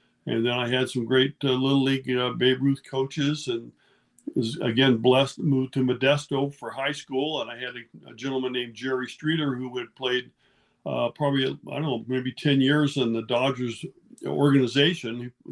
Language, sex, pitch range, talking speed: English, male, 125-140 Hz, 185 wpm